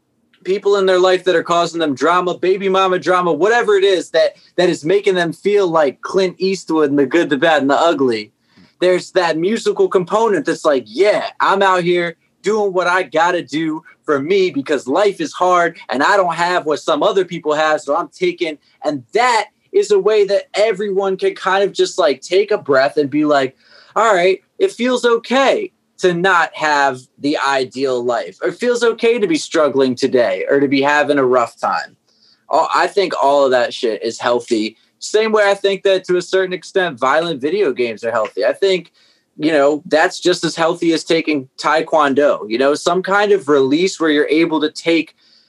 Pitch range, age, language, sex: 150-200 Hz, 20-39, English, male